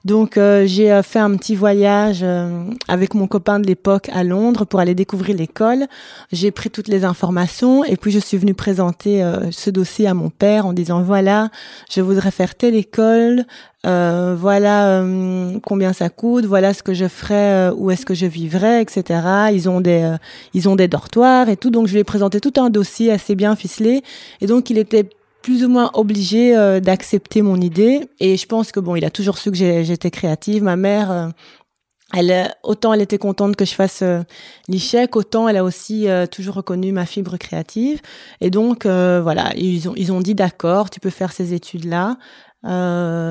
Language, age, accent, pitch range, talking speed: French, 20-39, French, 185-210 Hz, 200 wpm